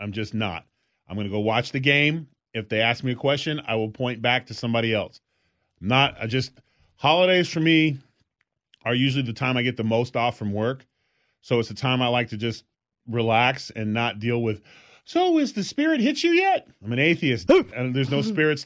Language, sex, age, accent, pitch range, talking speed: English, male, 30-49, American, 125-160 Hz, 220 wpm